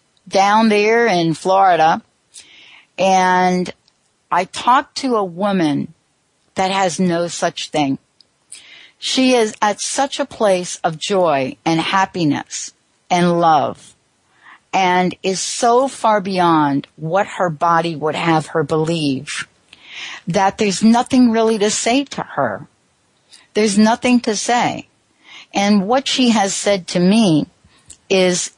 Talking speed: 125 wpm